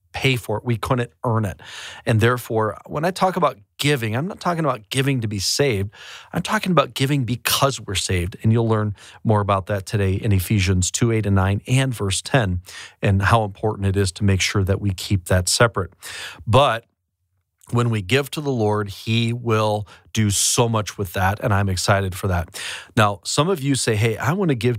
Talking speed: 210 wpm